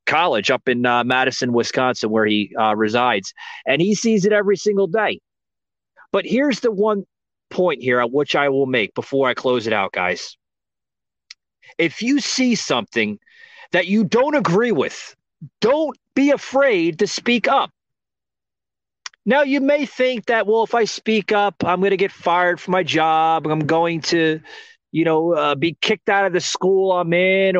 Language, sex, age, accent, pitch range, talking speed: English, male, 30-49, American, 155-220 Hz, 175 wpm